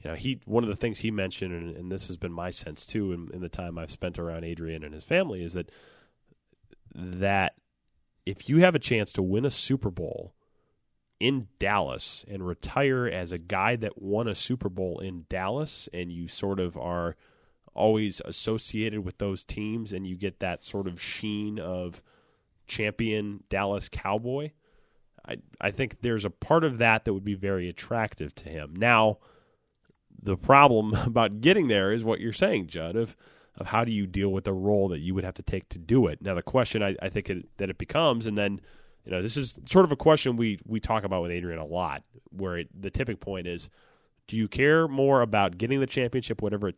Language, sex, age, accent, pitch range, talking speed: English, male, 30-49, American, 90-110 Hz, 210 wpm